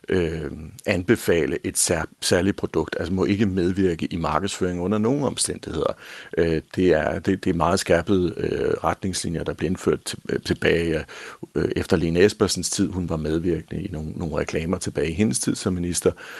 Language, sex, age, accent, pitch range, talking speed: Danish, male, 60-79, native, 85-105 Hz, 175 wpm